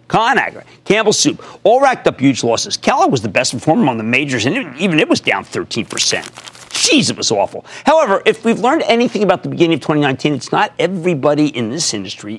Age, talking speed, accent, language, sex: 50-69, 205 wpm, American, English, male